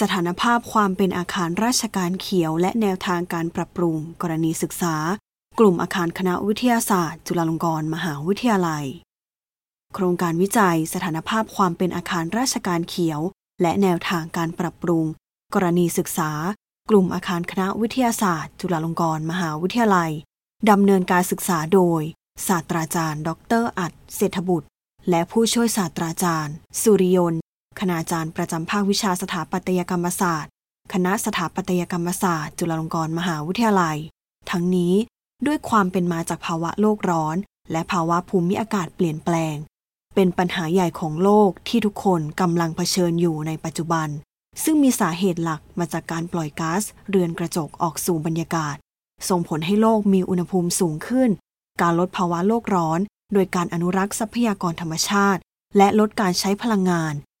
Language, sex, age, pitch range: English, female, 20-39, 170-200 Hz